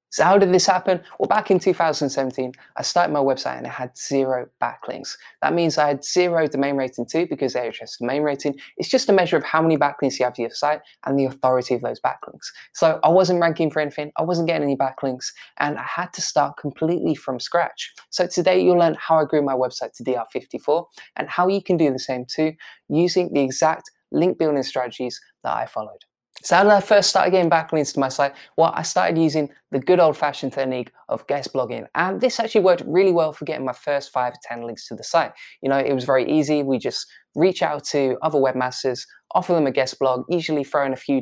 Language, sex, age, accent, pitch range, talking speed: English, male, 20-39, British, 130-165 Hz, 230 wpm